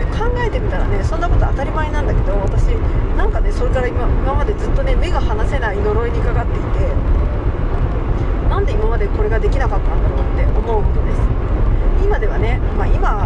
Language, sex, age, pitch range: Japanese, female, 40-59, 85-105 Hz